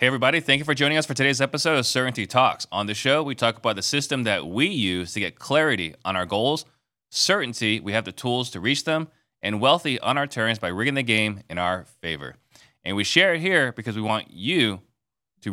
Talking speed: 230 wpm